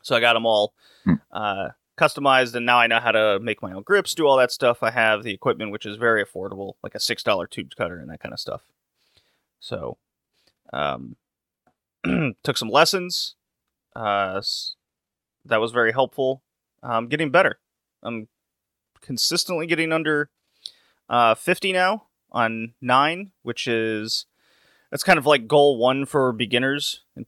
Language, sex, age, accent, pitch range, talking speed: English, male, 30-49, American, 110-140 Hz, 160 wpm